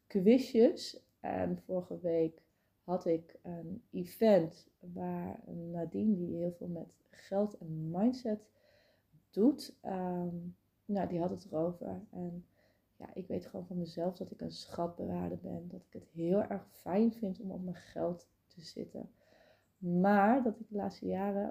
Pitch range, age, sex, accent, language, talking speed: 175-210 Hz, 30-49, female, Dutch, Dutch, 145 wpm